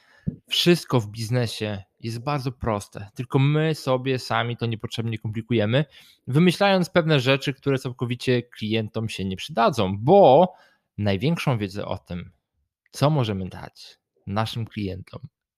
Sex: male